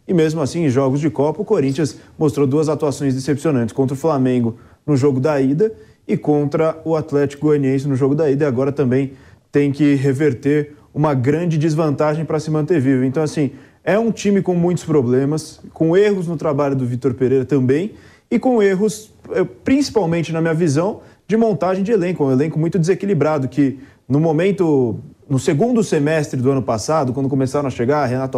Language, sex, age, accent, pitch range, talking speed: English, male, 20-39, Brazilian, 135-170 Hz, 185 wpm